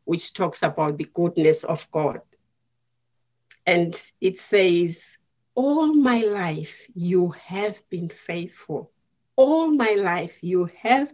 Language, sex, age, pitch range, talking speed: English, female, 50-69, 125-200 Hz, 120 wpm